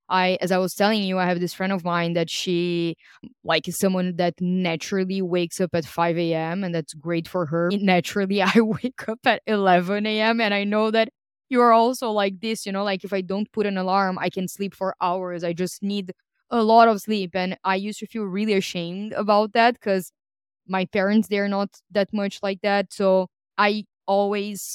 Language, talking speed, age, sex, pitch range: English, 215 wpm, 20-39, female, 180-205 Hz